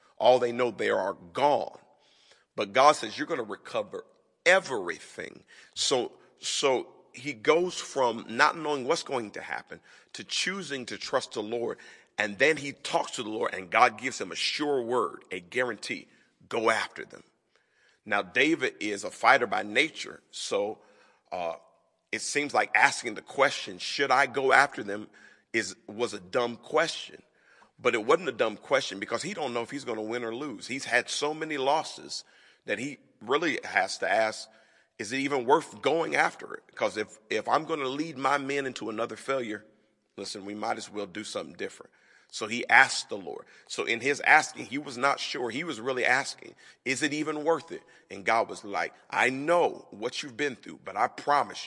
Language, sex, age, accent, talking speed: English, male, 40-59, American, 190 wpm